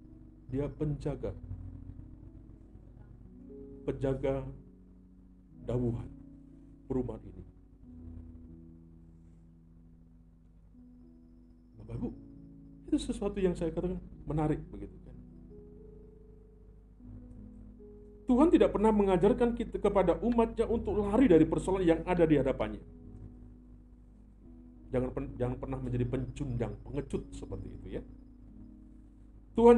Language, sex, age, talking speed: Indonesian, male, 50-69, 80 wpm